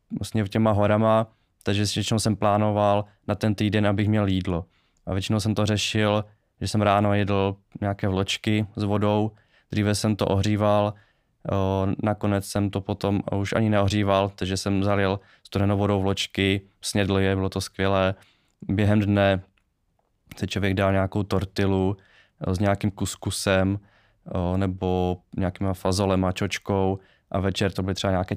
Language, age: Czech, 20-39